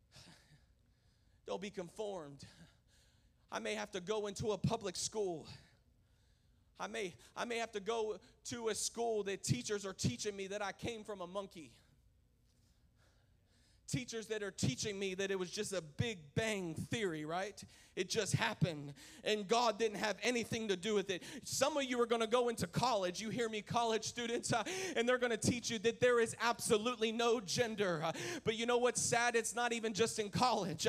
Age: 30-49